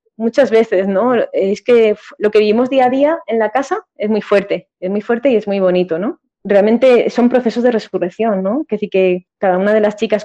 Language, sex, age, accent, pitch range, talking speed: Spanish, female, 20-39, Spanish, 185-210 Hz, 235 wpm